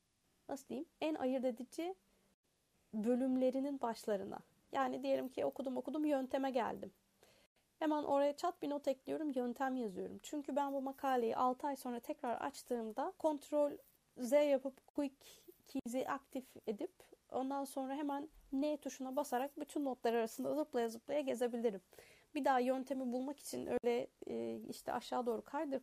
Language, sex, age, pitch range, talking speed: Turkish, female, 30-49, 225-280 Hz, 135 wpm